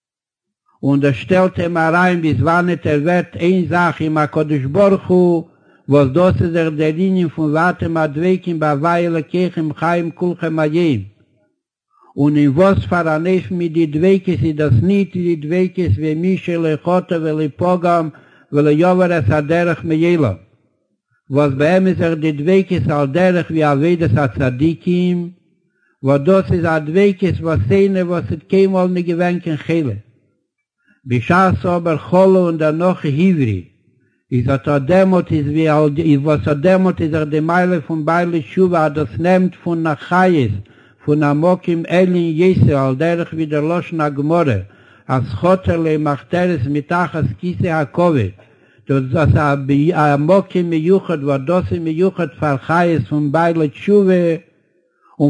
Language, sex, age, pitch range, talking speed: Hebrew, male, 60-79, 150-180 Hz, 115 wpm